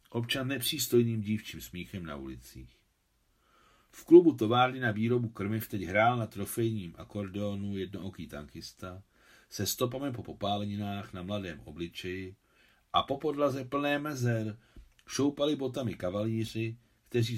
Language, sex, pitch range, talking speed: Czech, male, 95-120 Hz, 120 wpm